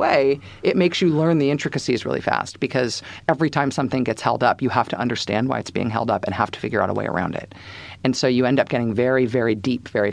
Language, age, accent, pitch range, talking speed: English, 40-59, American, 120-155 Hz, 260 wpm